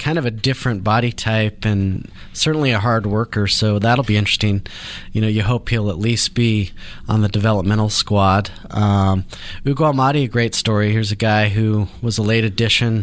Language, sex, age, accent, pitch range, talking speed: English, male, 30-49, American, 105-120 Hz, 185 wpm